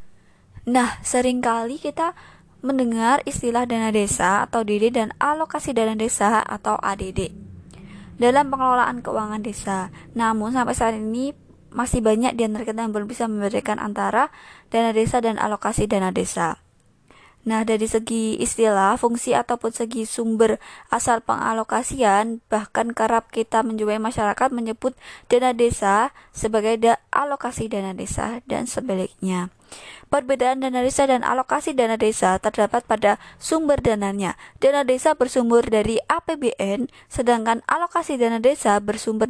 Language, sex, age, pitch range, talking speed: Indonesian, female, 20-39, 220-255 Hz, 130 wpm